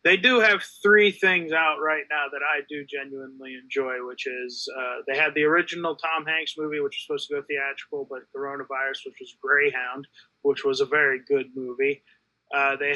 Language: English